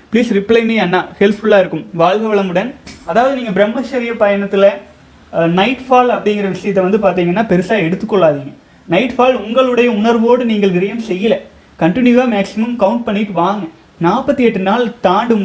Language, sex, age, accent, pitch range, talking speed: Tamil, male, 30-49, native, 200-260 Hz, 140 wpm